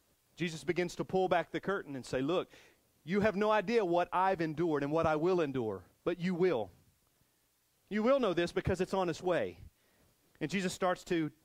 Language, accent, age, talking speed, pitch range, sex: English, American, 40-59, 200 wpm, 135-180 Hz, male